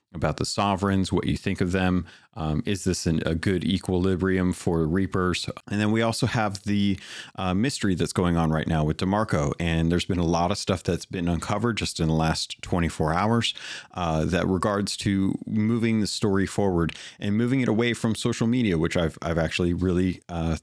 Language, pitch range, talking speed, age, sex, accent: English, 85-105 Hz, 200 wpm, 30-49, male, American